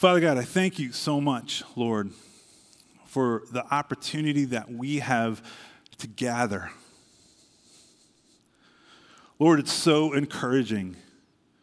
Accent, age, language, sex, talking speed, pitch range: American, 30-49, English, male, 105 wpm, 115-150 Hz